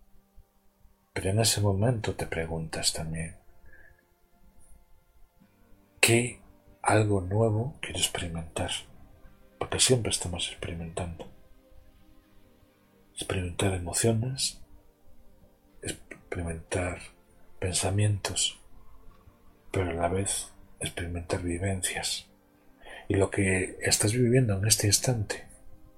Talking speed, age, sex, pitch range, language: 80 wpm, 40-59, male, 90-105 Hz, Spanish